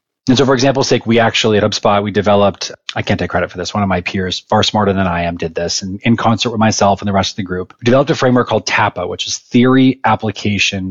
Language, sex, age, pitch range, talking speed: English, male, 30-49, 100-125 Hz, 270 wpm